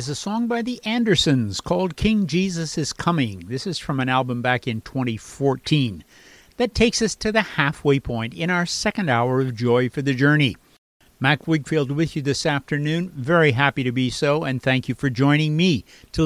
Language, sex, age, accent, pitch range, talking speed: English, male, 50-69, American, 125-165 Hz, 190 wpm